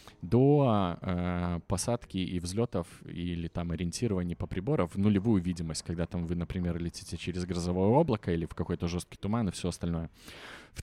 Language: Russian